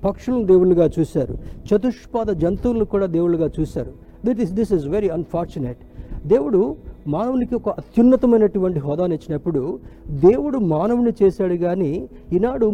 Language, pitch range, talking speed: Telugu, 155-210 Hz, 115 wpm